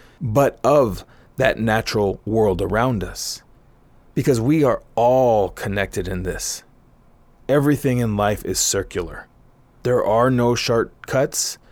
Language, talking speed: English, 120 wpm